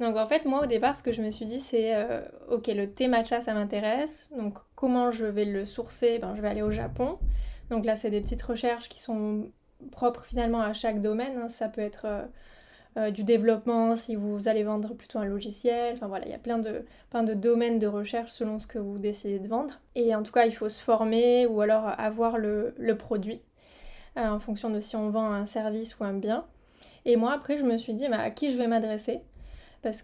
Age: 20-39